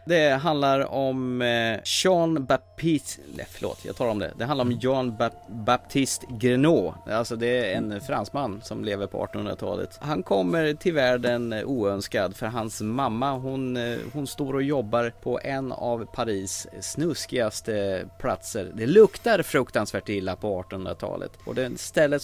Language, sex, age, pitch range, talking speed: Swedish, male, 30-49, 95-130 Hz, 145 wpm